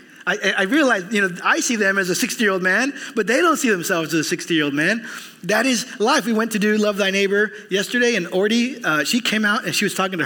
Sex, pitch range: male, 165-225 Hz